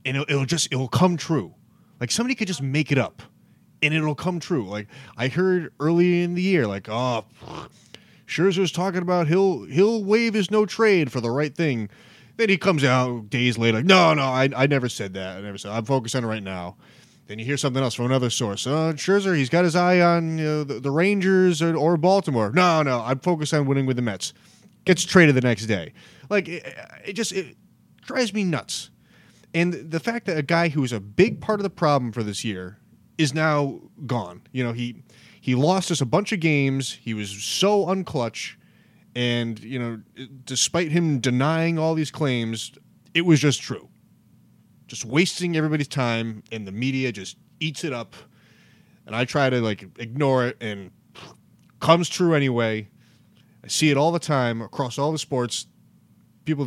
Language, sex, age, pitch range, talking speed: English, male, 30-49, 120-170 Hz, 200 wpm